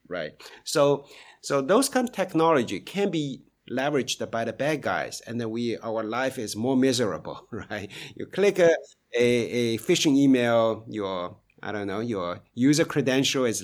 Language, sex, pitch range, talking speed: English, male, 110-155 Hz, 165 wpm